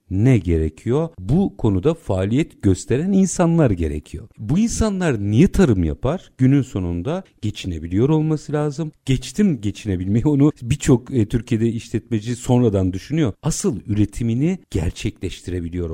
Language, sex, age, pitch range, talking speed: Turkish, male, 50-69, 95-140 Hz, 110 wpm